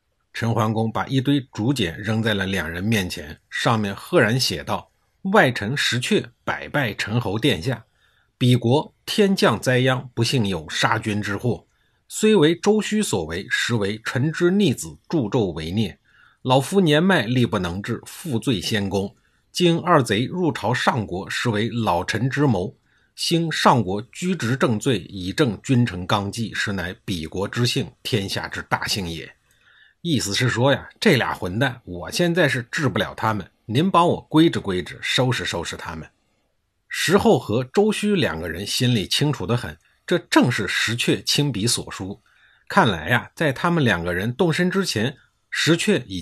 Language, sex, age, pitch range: Chinese, male, 50-69, 100-150 Hz